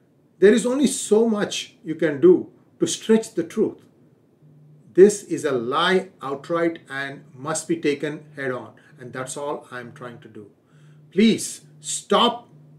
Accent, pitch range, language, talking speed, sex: Indian, 150-200 Hz, English, 150 wpm, male